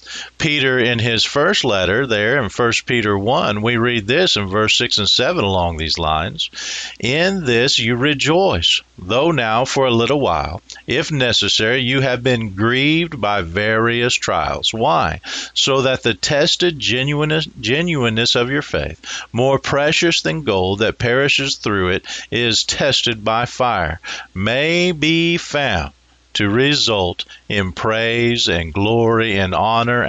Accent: American